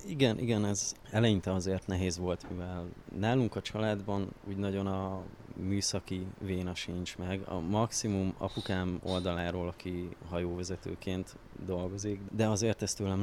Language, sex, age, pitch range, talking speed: Hungarian, male, 20-39, 90-110 Hz, 130 wpm